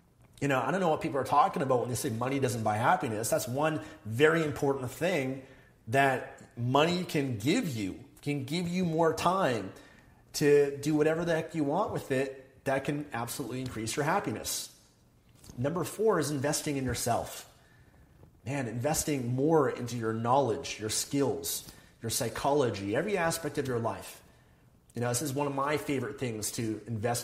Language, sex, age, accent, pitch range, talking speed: English, male, 30-49, American, 115-145 Hz, 175 wpm